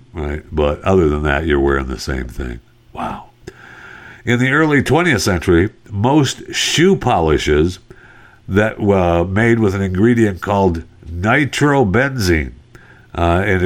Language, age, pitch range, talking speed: English, 60-79, 75-120 Hz, 125 wpm